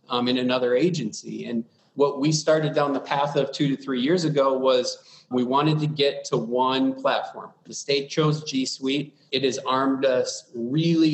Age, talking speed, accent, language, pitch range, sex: 30-49, 190 wpm, American, English, 130-155 Hz, male